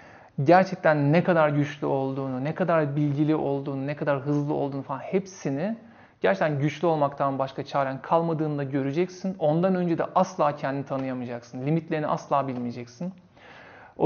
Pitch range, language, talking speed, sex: 130-180 Hz, Turkish, 135 wpm, male